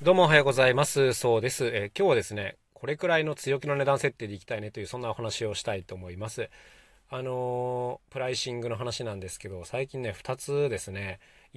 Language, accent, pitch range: Japanese, native, 100-145 Hz